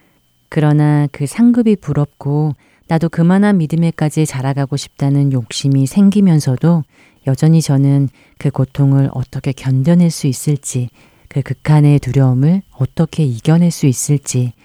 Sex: female